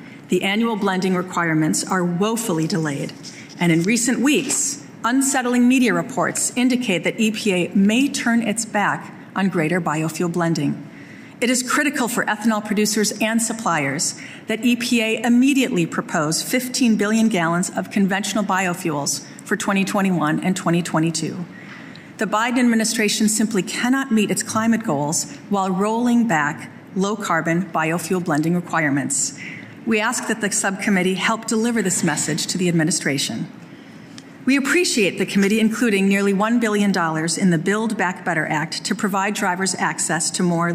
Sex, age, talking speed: female, 40-59, 140 wpm